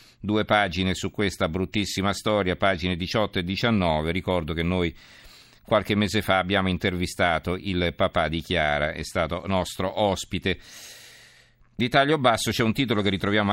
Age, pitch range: 50-69, 90-110 Hz